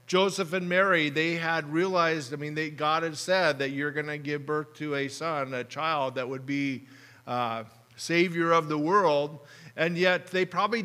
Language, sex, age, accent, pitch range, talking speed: English, male, 50-69, American, 125-165 Hz, 190 wpm